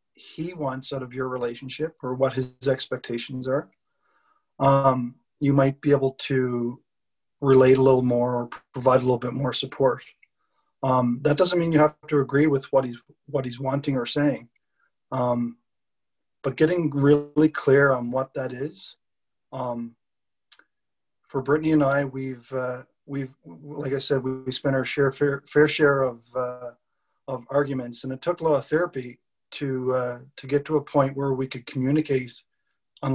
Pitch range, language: 125-145 Hz, English